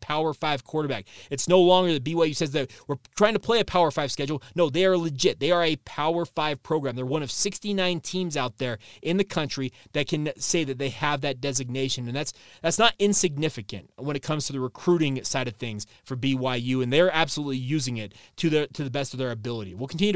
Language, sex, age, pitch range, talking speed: English, male, 20-39, 135-170 Hz, 230 wpm